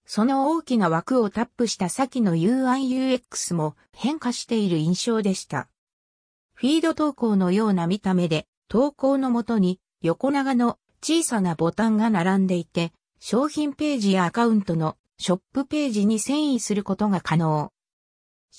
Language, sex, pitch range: Japanese, female, 180-255 Hz